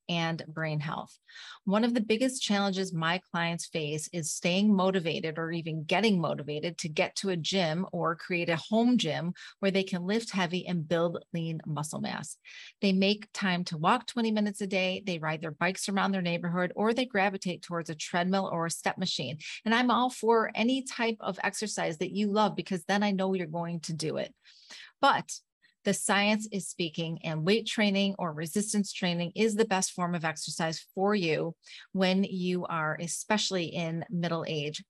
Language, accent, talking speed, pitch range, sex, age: English, American, 190 wpm, 165-200 Hz, female, 30-49